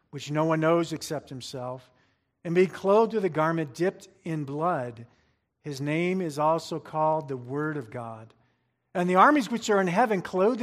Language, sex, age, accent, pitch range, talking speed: English, male, 50-69, American, 130-170 Hz, 180 wpm